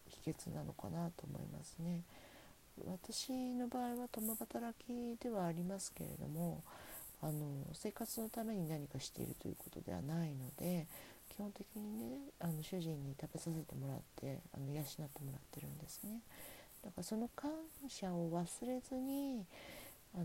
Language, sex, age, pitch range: Japanese, female, 40-59, 150-195 Hz